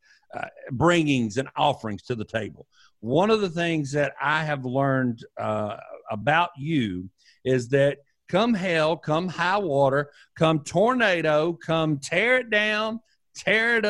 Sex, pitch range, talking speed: male, 135-180 Hz, 145 wpm